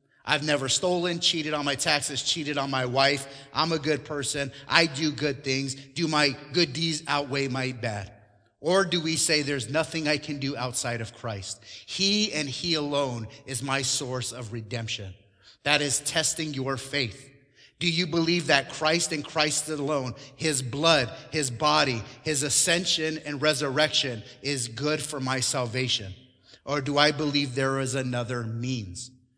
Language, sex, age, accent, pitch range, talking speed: English, male, 30-49, American, 125-155 Hz, 165 wpm